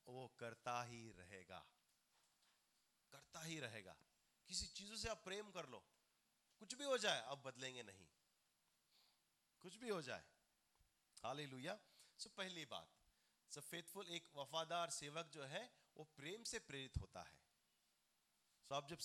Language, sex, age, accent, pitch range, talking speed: Hindi, male, 30-49, native, 125-195 Hz, 160 wpm